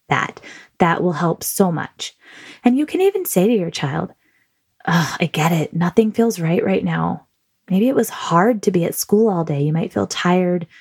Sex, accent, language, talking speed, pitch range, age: female, American, English, 200 wpm, 165-215 Hz, 20-39